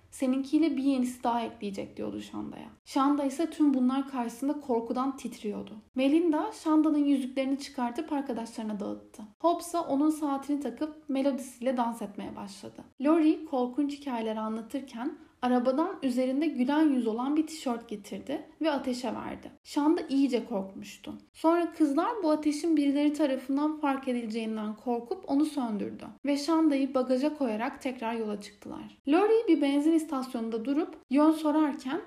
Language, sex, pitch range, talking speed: Turkish, female, 240-310 Hz, 135 wpm